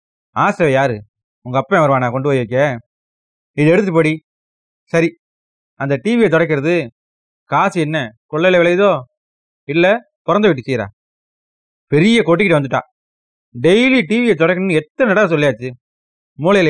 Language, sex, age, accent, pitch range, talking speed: Tamil, male, 30-49, native, 110-175 Hz, 120 wpm